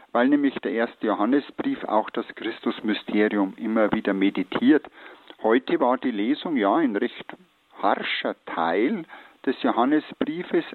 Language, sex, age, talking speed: German, male, 50-69, 125 wpm